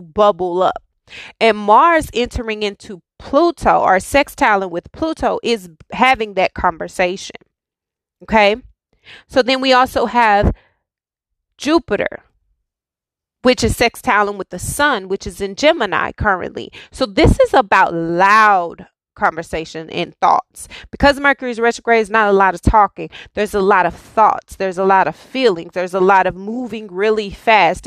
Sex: female